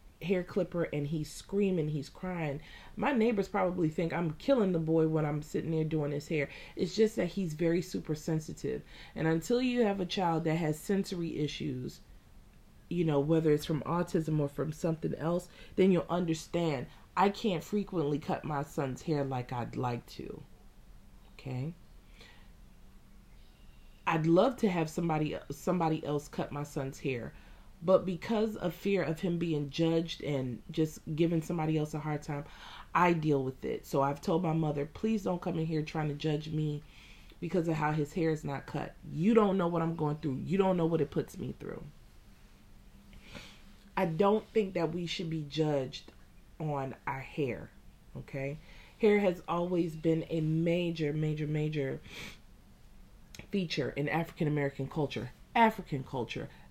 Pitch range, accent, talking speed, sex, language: 145-180 Hz, American, 165 wpm, female, English